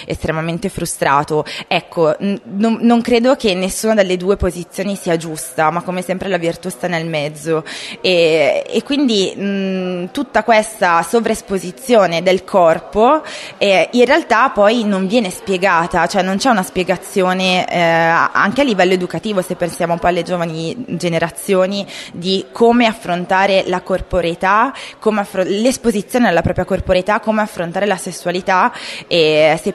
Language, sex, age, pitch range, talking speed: Italian, female, 20-39, 175-210 Hz, 145 wpm